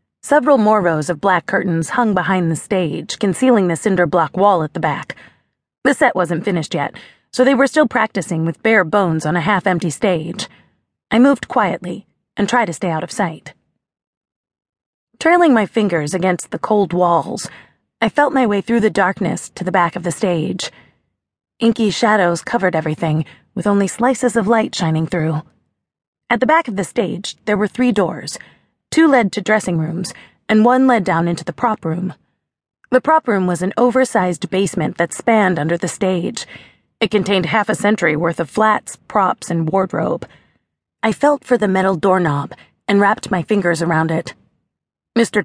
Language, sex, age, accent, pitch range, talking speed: English, female, 30-49, American, 175-225 Hz, 180 wpm